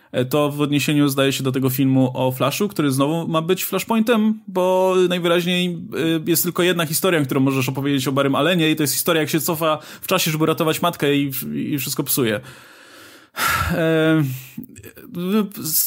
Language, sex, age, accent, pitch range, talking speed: Polish, male, 20-39, native, 140-175 Hz, 165 wpm